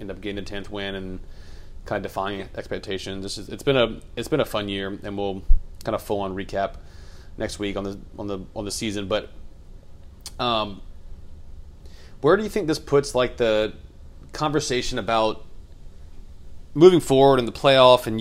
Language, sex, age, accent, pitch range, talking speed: English, male, 30-49, American, 85-110 Hz, 180 wpm